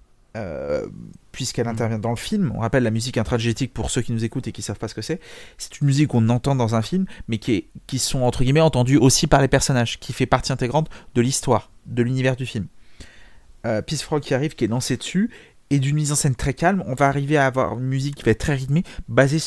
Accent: French